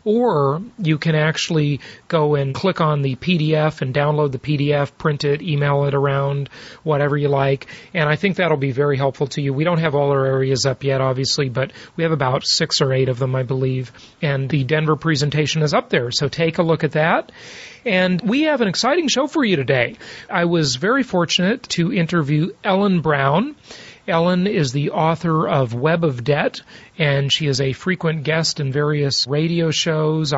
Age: 40-59